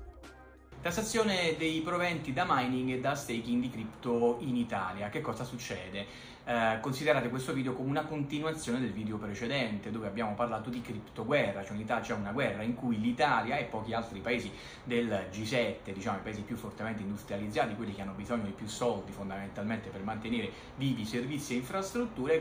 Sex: male